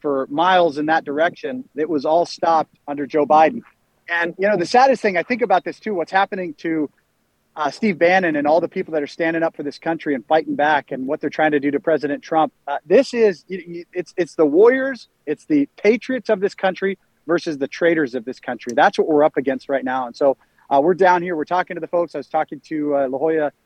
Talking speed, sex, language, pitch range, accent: 245 wpm, male, English, 145-175 Hz, American